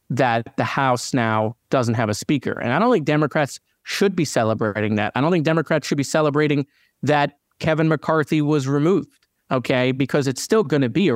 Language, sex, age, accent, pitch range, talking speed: English, male, 30-49, American, 130-180 Hz, 200 wpm